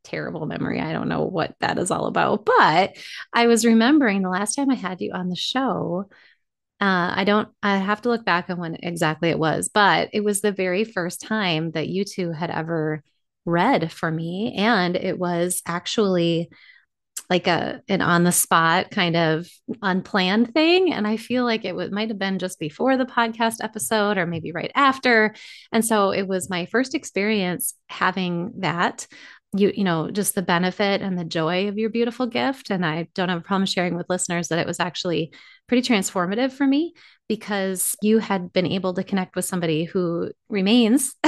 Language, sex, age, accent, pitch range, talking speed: English, female, 30-49, American, 175-225 Hz, 195 wpm